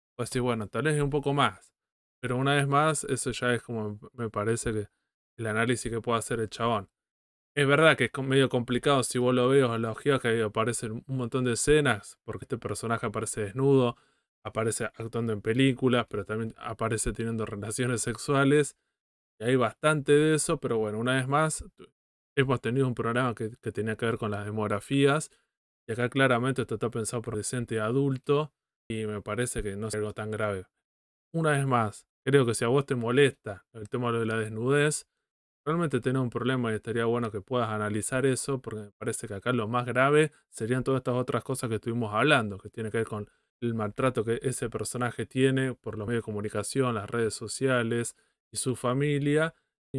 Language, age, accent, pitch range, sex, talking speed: Spanish, 20-39, Argentinian, 110-135 Hz, male, 200 wpm